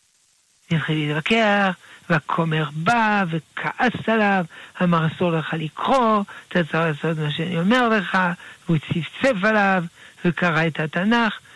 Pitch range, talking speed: 170-225 Hz, 120 wpm